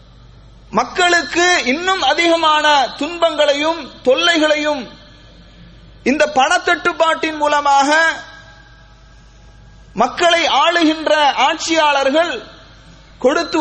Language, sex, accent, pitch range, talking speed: English, male, Indian, 280-335 Hz, 55 wpm